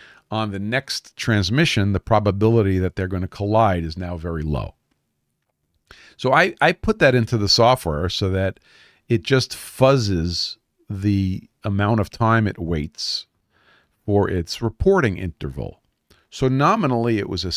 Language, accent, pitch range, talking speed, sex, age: English, American, 95-115 Hz, 145 wpm, male, 50-69